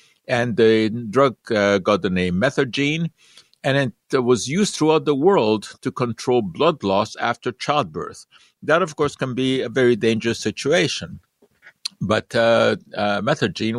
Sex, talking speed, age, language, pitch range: male, 150 wpm, 60-79, English, 110-155 Hz